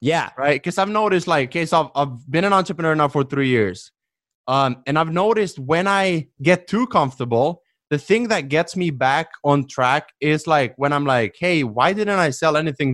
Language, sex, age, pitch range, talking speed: English, male, 20-39, 130-170 Hz, 210 wpm